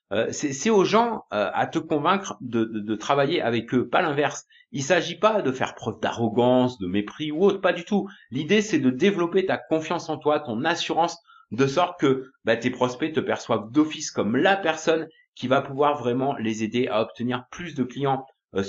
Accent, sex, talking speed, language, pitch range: French, male, 210 wpm, French, 120-165 Hz